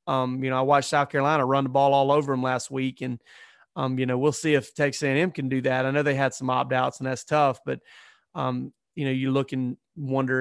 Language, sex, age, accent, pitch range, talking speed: English, male, 30-49, American, 130-150 Hz, 260 wpm